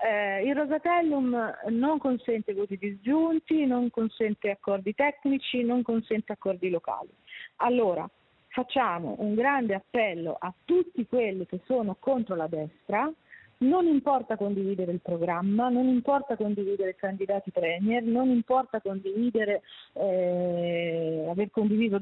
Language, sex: Italian, female